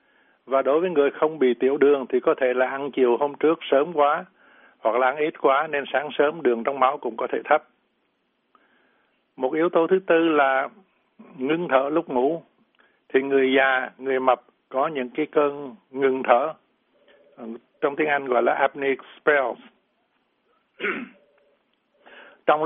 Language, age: Vietnamese, 60-79